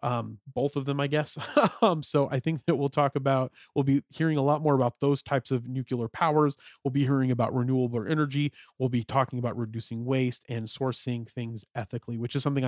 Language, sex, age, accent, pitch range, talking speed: English, male, 30-49, American, 120-145 Hz, 215 wpm